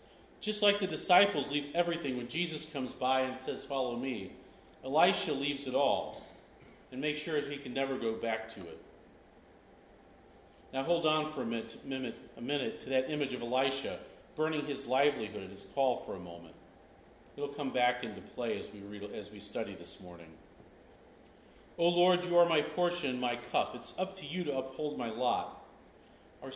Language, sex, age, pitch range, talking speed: English, male, 40-59, 130-175 Hz, 185 wpm